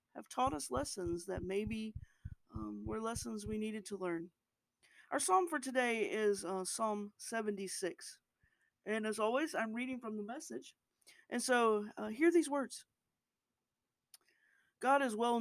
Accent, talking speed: American, 150 wpm